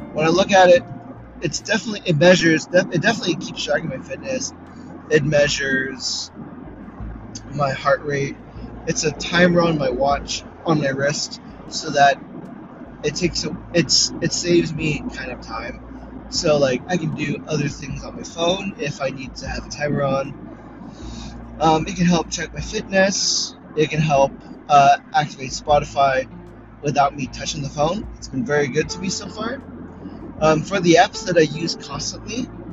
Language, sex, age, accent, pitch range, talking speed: English, male, 20-39, American, 140-175 Hz, 170 wpm